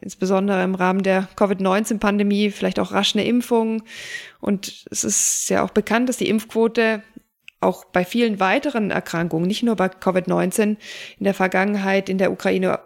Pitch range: 185-220 Hz